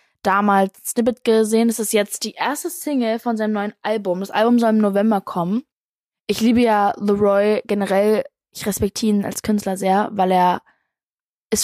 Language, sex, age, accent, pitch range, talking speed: German, female, 20-39, German, 190-240 Hz, 170 wpm